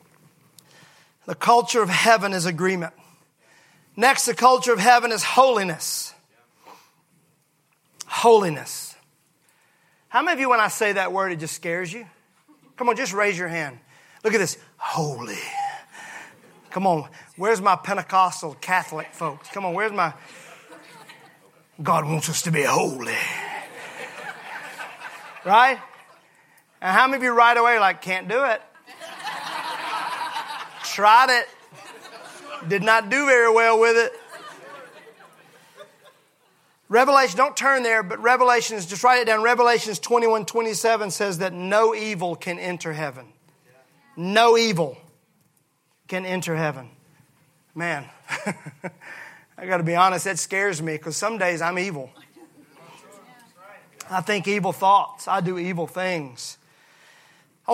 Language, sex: English, male